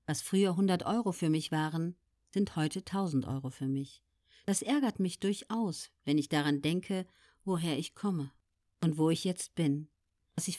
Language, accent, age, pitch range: German, German, 50-69, 140-200 Hz